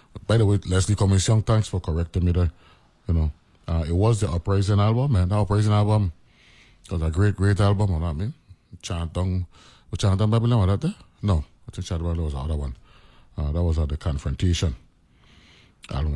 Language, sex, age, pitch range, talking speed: English, male, 30-49, 80-105 Hz, 220 wpm